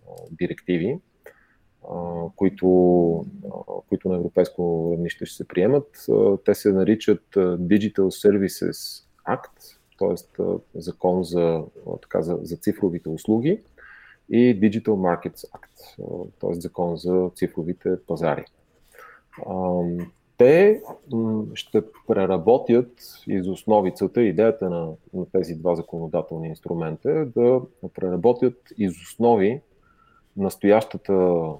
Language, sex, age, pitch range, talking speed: English, male, 30-49, 85-115 Hz, 90 wpm